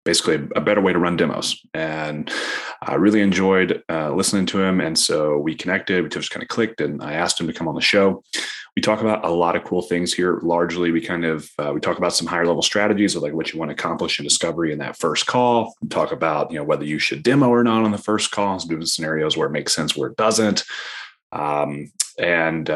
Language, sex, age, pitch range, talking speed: English, male, 30-49, 80-100 Hz, 250 wpm